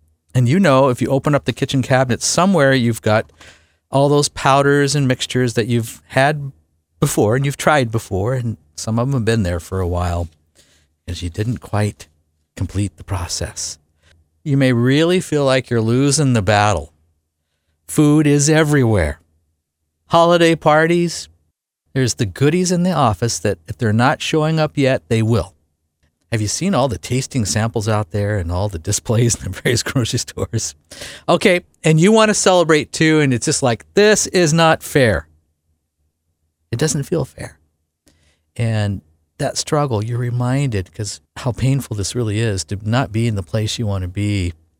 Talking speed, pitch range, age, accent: 175 wpm, 85-130 Hz, 50-69, American